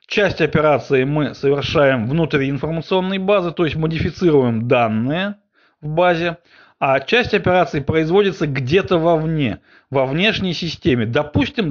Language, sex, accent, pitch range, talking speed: Russian, male, native, 140-185 Hz, 120 wpm